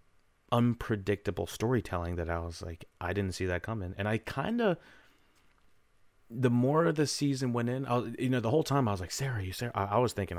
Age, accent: 30-49, American